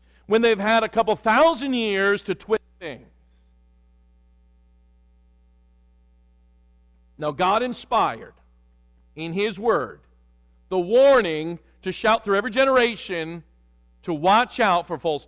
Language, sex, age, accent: English, male, 50-69, American